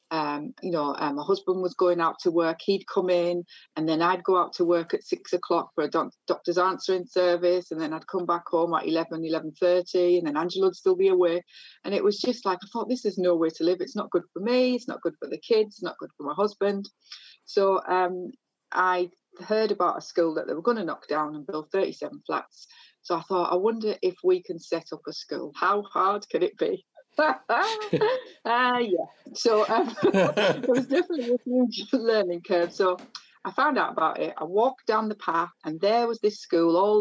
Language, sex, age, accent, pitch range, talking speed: English, female, 30-49, British, 175-225 Hz, 225 wpm